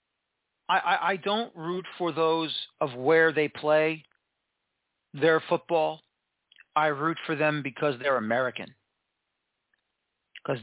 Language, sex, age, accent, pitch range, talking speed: English, male, 40-59, American, 145-190 Hz, 115 wpm